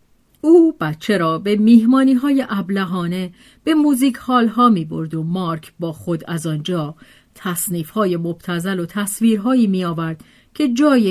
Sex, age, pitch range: female, 40-59, 170-250 Hz